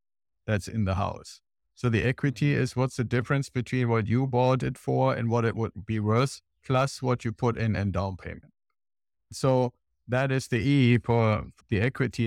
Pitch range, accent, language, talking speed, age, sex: 105-120 Hz, German, English, 190 wpm, 50-69, male